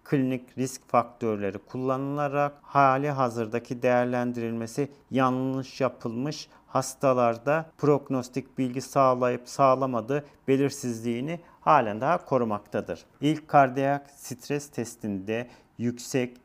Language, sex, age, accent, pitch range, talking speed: Turkish, male, 40-59, native, 115-130 Hz, 85 wpm